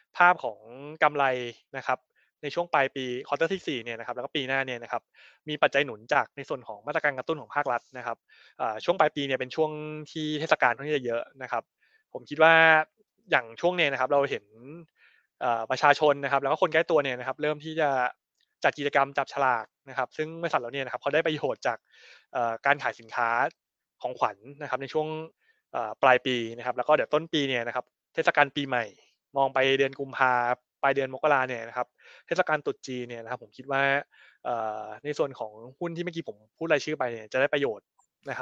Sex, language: male, Thai